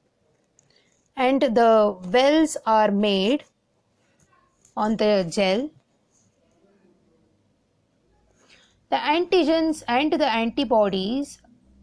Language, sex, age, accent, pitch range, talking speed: English, female, 20-39, Indian, 210-280 Hz, 65 wpm